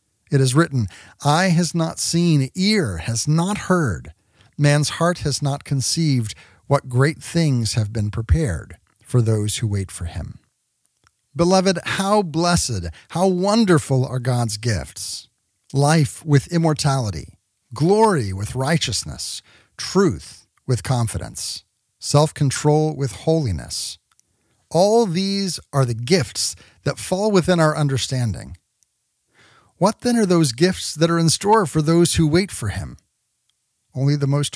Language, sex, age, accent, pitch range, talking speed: English, male, 50-69, American, 110-165 Hz, 130 wpm